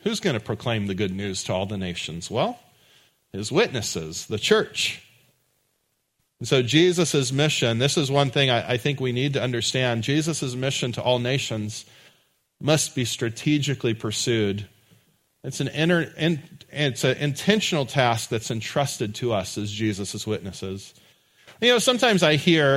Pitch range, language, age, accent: 120-170 Hz, English, 40-59, American